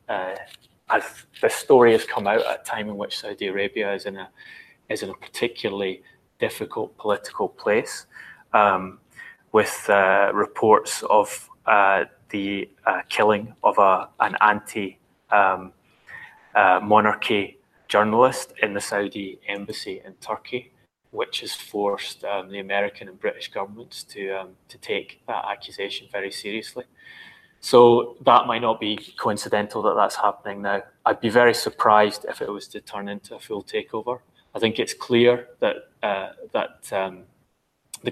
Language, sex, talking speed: English, male, 150 wpm